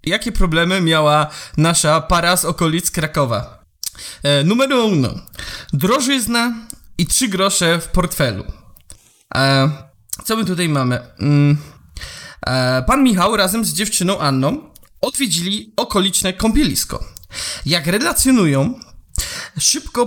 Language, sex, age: Polish, male, 20-39